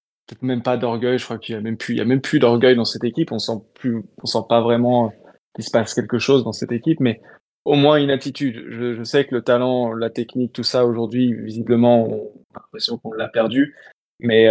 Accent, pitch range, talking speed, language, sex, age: French, 115-130 Hz, 240 wpm, French, male, 20-39